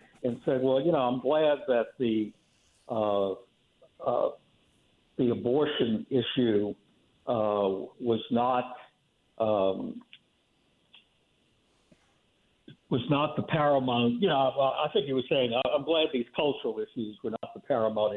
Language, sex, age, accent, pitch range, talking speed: English, male, 60-79, American, 115-150 Hz, 130 wpm